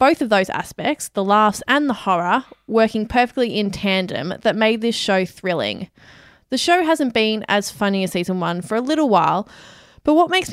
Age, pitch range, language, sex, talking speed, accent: 20-39, 190-235 Hz, English, female, 195 wpm, Australian